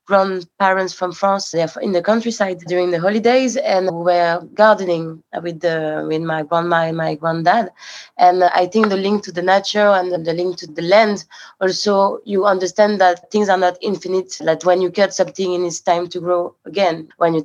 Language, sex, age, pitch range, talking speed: English, female, 20-39, 165-190 Hz, 205 wpm